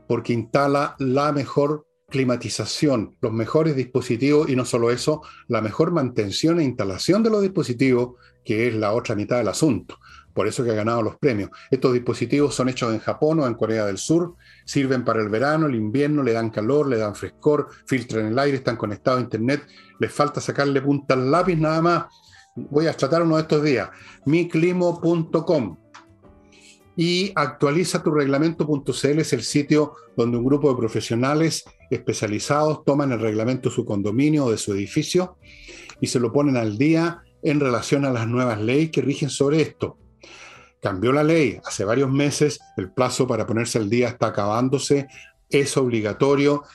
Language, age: Spanish, 50-69